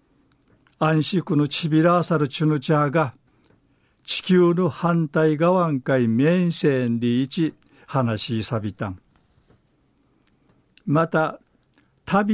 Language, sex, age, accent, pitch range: Japanese, male, 60-79, native, 125-170 Hz